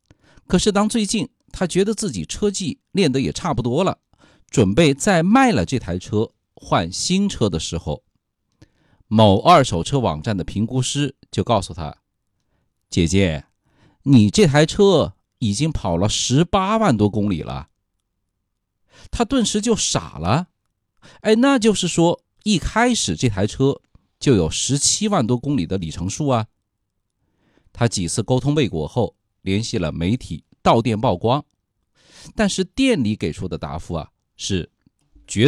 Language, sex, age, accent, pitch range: Chinese, male, 50-69, native, 95-145 Hz